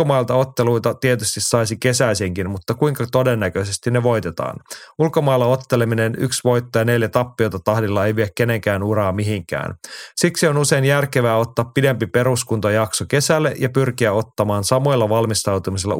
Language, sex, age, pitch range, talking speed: Finnish, male, 30-49, 105-130 Hz, 130 wpm